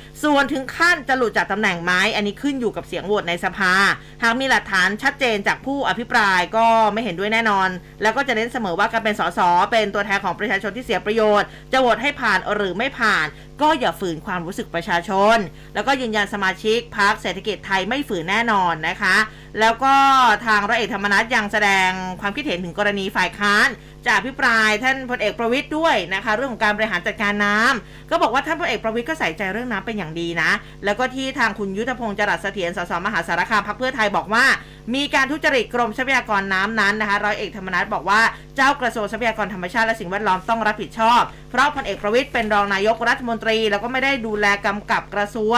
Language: Thai